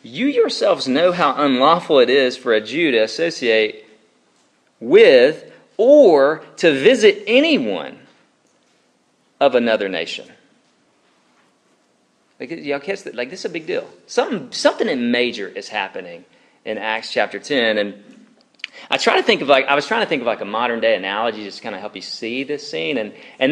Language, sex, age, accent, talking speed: English, male, 40-59, American, 175 wpm